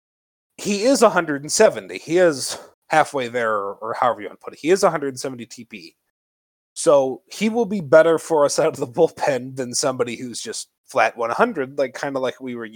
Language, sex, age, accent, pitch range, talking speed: English, male, 30-49, American, 125-170 Hz, 200 wpm